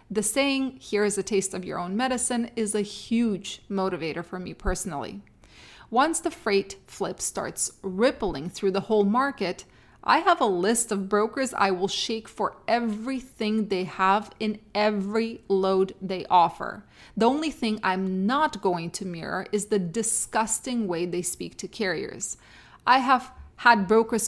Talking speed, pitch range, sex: 160 wpm, 195-240 Hz, female